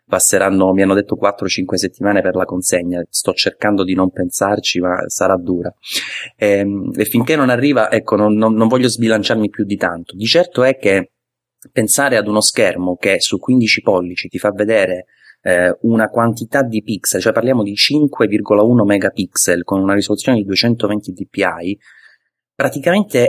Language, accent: Italian, native